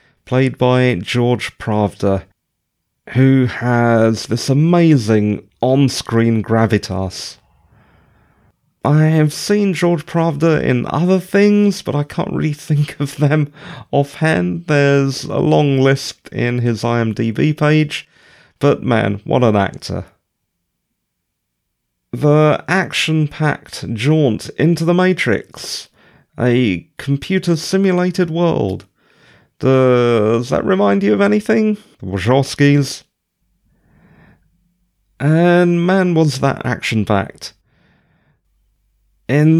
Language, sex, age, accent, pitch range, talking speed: English, male, 30-49, British, 115-160 Hz, 95 wpm